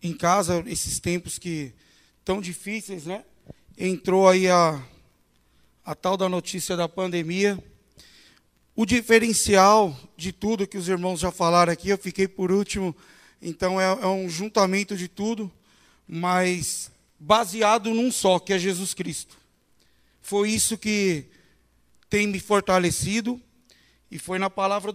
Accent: Brazilian